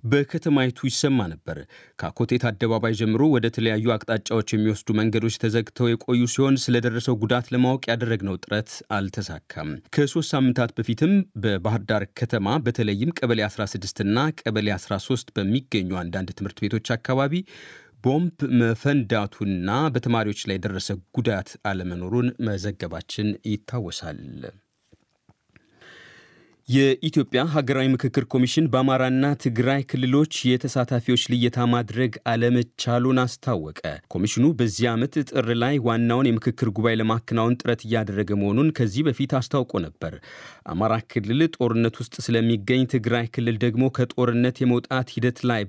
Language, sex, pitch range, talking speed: Amharic, male, 110-130 Hz, 110 wpm